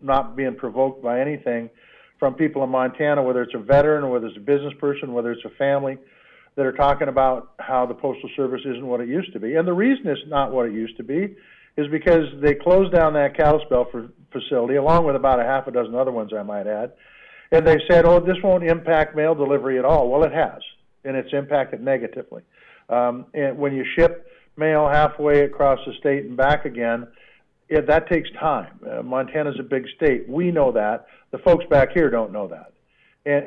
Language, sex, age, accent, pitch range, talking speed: English, male, 50-69, American, 130-155 Hz, 215 wpm